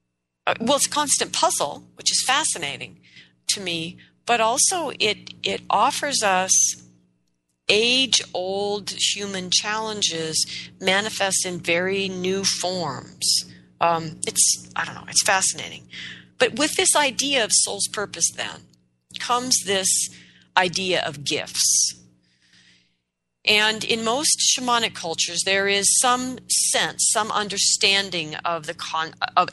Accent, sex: American, female